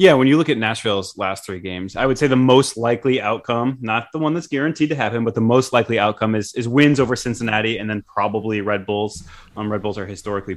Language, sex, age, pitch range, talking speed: English, male, 20-39, 100-125 Hz, 245 wpm